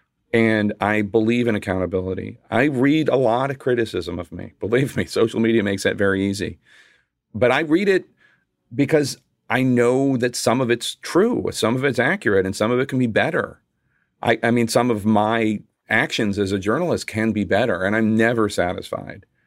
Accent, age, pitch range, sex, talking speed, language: American, 40-59, 100-125 Hz, male, 190 wpm, English